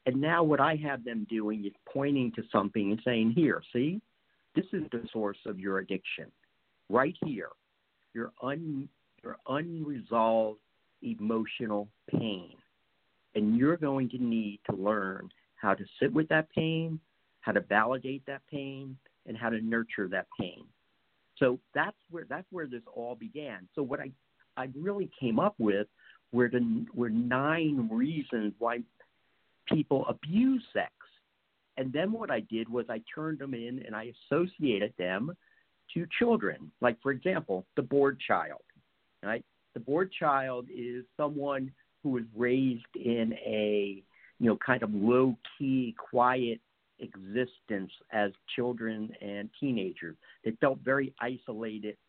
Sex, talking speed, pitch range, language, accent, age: male, 145 wpm, 110-145 Hz, English, American, 50-69